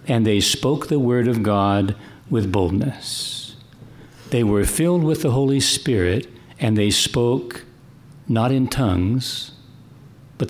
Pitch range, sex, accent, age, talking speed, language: 110-140 Hz, male, American, 60-79, 130 wpm, English